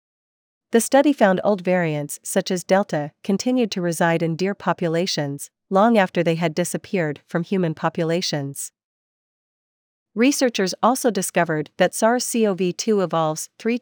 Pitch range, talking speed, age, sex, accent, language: 165-200 Hz, 125 wpm, 40-59, female, American, English